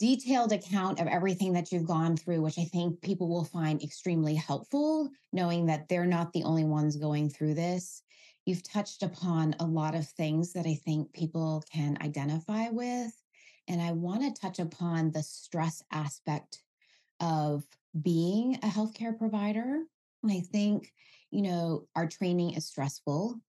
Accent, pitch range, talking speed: American, 160-220 Hz, 160 wpm